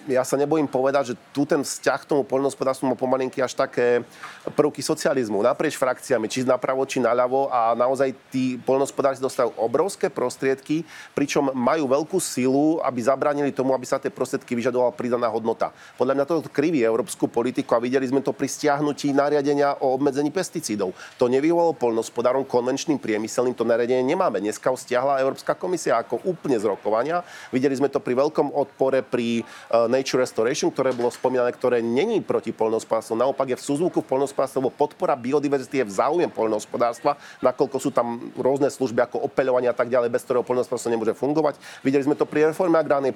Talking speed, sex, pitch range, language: 175 wpm, male, 120-145 Hz, Slovak